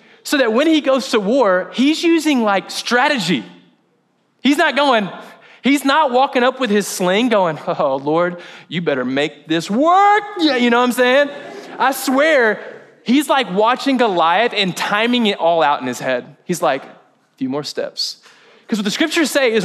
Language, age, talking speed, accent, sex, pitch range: English, 20-39, 185 wpm, American, male, 190-270 Hz